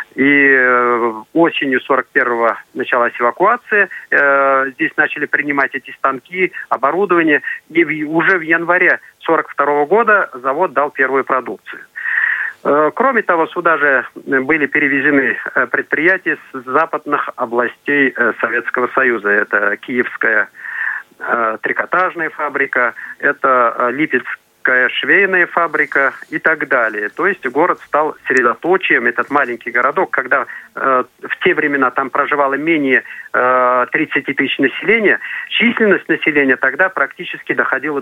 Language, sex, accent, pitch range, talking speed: Russian, male, native, 135-180 Hz, 110 wpm